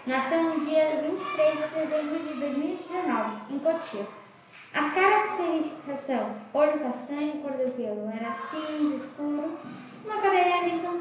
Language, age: Portuguese, 10-29